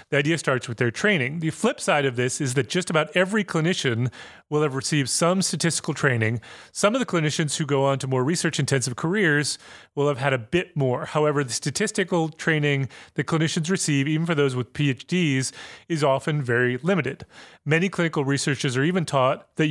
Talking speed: 190 wpm